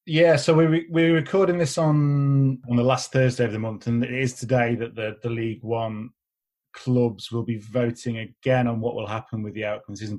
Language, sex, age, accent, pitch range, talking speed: English, male, 30-49, British, 110-135 Hz, 220 wpm